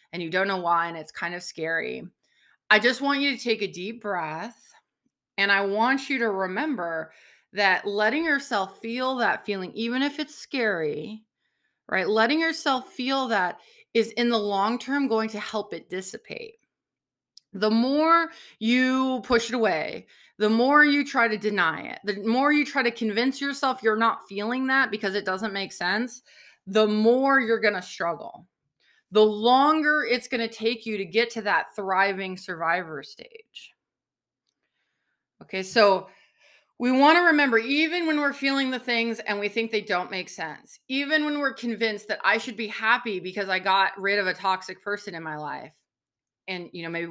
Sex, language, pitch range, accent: female, English, 195-255 Hz, American